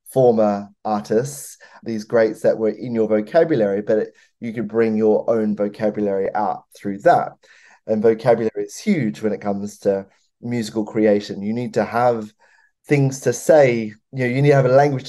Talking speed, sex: 180 wpm, male